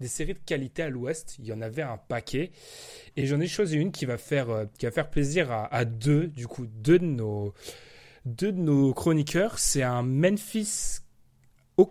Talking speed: 200 wpm